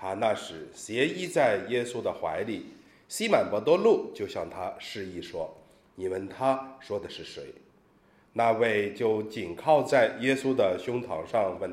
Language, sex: Chinese, male